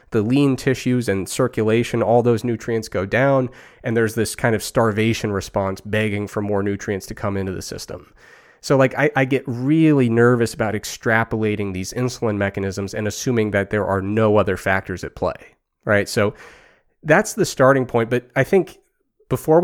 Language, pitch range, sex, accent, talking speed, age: English, 105-130 Hz, male, American, 175 wpm, 30-49